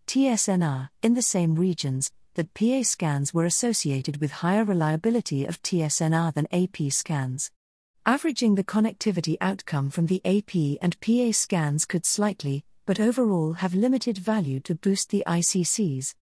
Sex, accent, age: female, British, 40-59